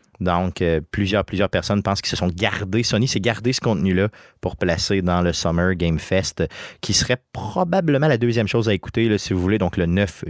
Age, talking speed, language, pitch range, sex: 30-49, 210 wpm, French, 95-120 Hz, male